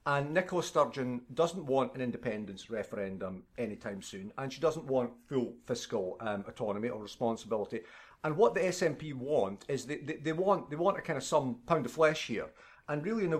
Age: 50-69